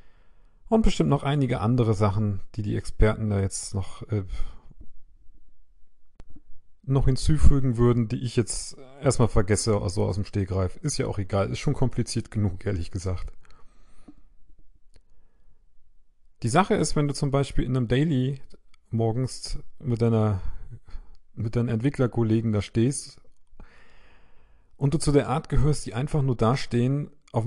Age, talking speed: 40-59, 140 wpm